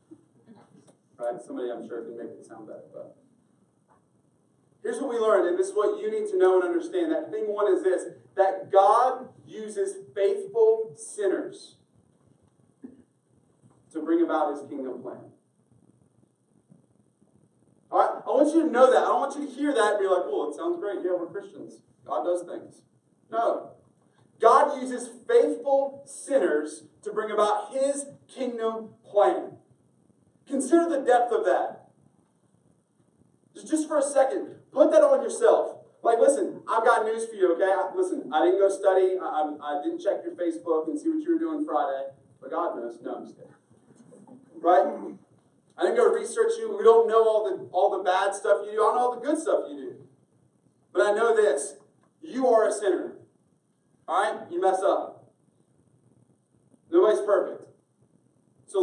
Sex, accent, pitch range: male, American, 190-310 Hz